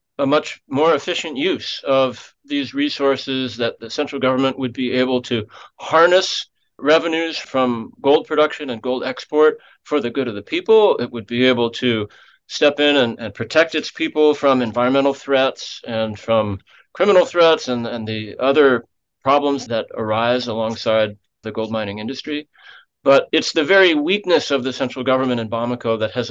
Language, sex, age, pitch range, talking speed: English, male, 30-49, 115-145 Hz, 170 wpm